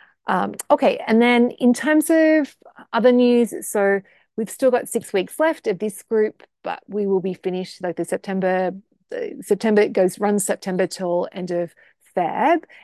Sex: female